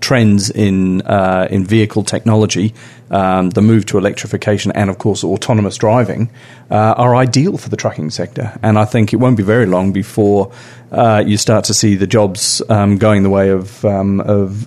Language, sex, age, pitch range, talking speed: English, male, 40-59, 100-115 Hz, 190 wpm